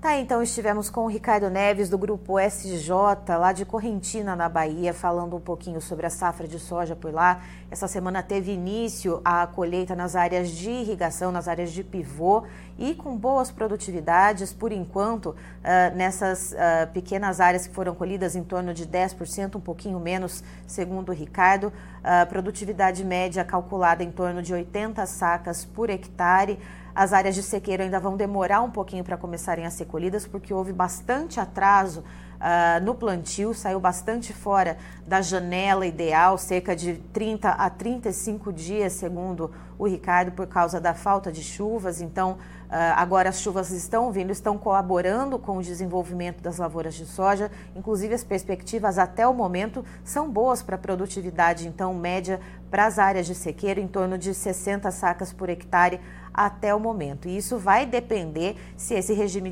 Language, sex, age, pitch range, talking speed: Portuguese, female, 30-49, 175-200 Hz, 165 wpm